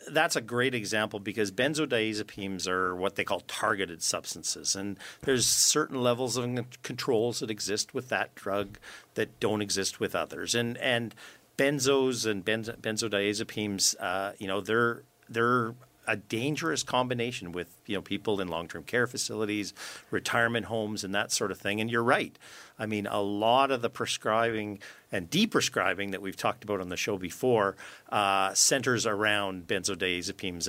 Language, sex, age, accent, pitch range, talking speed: English, male, 50-69, American, 95-120 Hz, 155 wpm